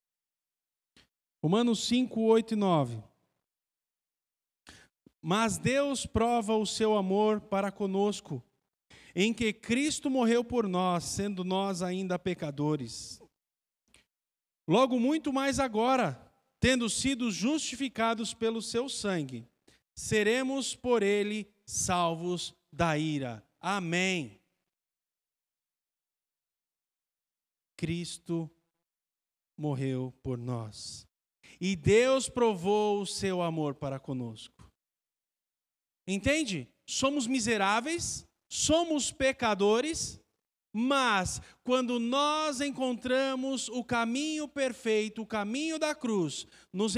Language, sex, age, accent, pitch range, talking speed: Portuguese, male, 50-69, Brazilian, 175-245 Hz, 90 wpm